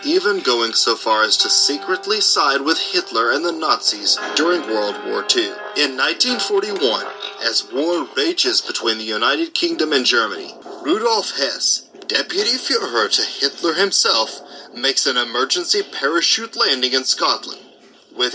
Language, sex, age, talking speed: English, male, 30-49, 140 wpm